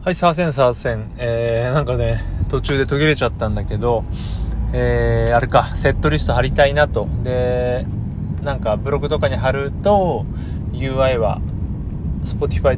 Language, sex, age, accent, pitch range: Japanese, male, 30-49, native, 105-150 Hz